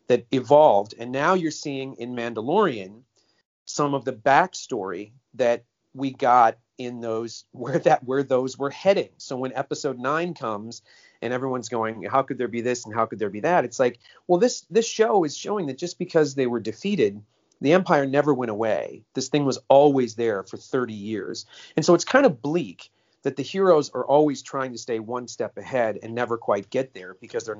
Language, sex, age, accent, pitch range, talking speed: English, male, 40-59, American, 115-150 Hz, 200 wpm